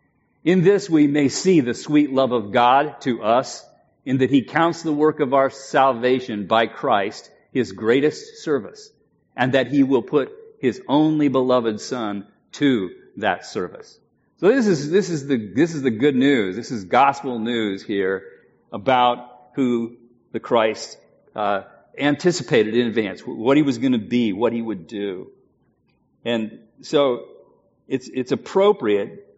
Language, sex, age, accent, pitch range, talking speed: English, male, 40-59, American, 120-175 Hz, 155 wpm